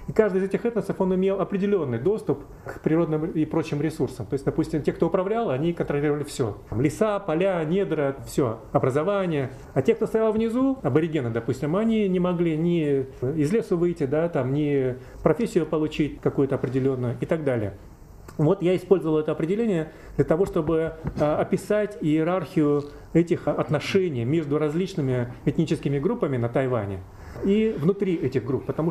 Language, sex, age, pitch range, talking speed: Russian, male, 30-49, 135-170 Hz, 160 wpm